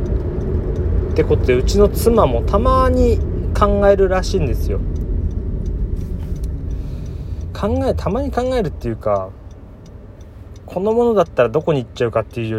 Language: Japanese